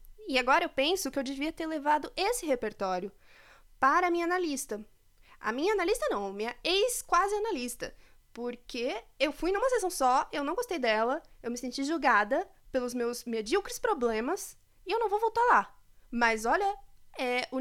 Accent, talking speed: Brazilian, 170 wpm